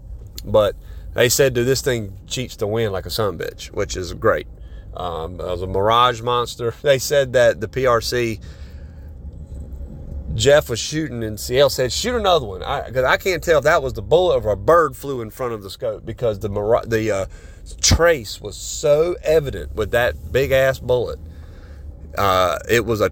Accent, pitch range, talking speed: American, 90-130 Hz, 190 wpm